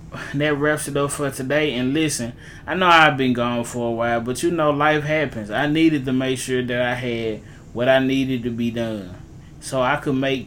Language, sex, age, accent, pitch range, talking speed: English, male, 20-39, American, 125-145 Hz, 225 wpm